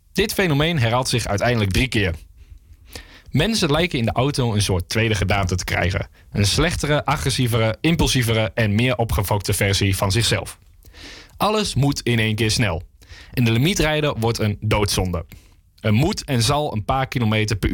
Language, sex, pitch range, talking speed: Dutch, male, 95-125 Hz, 160 wpm